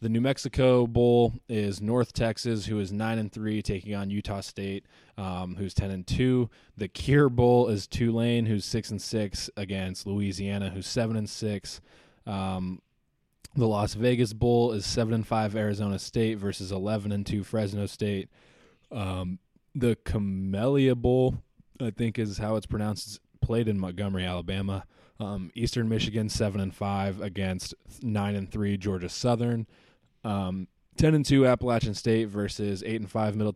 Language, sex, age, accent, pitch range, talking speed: English, male, 20-39, American, 95-115 Hz, 165 wpm